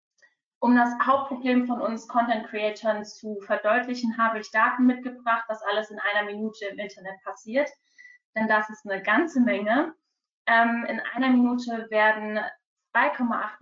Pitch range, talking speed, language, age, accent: 210-250 Hz, 140 wpm, German, 20-39, German